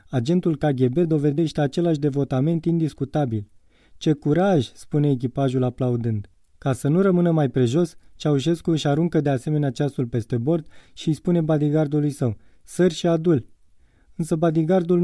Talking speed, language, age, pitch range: 140 wpm, Romanian, 20-39, 130-165 Hz